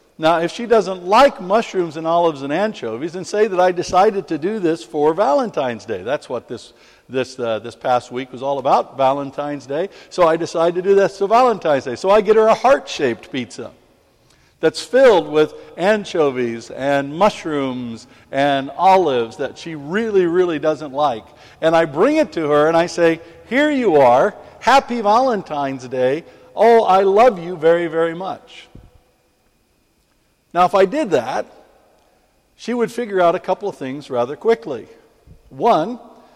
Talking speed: 170 wpm